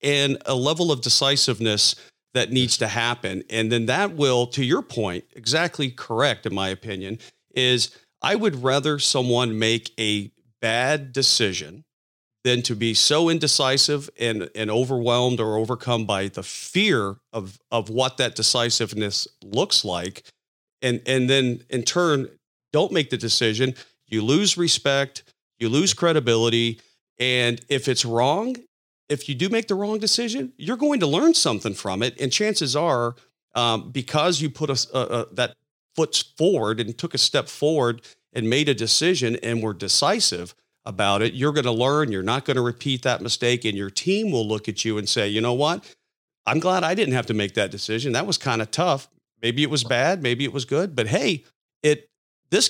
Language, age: English, 40-59